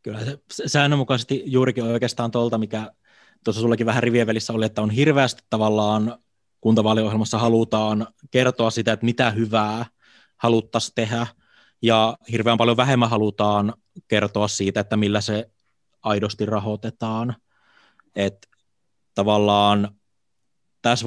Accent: native